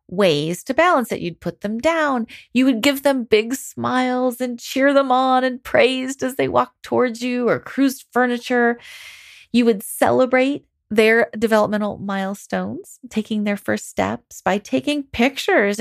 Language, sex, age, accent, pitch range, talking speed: English, female, 30-49, American, 215-285 Hz, 155 wpm